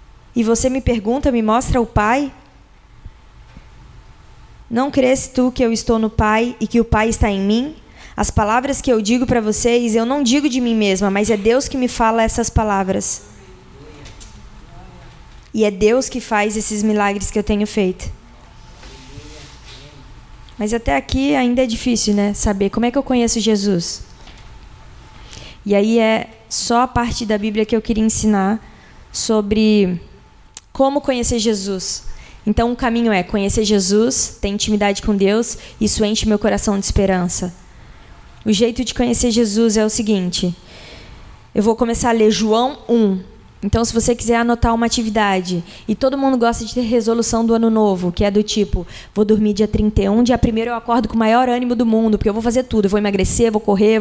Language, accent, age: Portuguese, Brazilian, 20-39